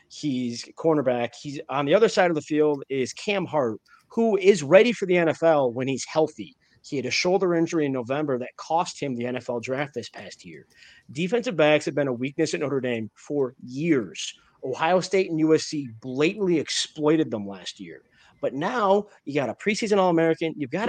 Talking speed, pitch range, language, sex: 195 wpm, 130-175 Hz, English, male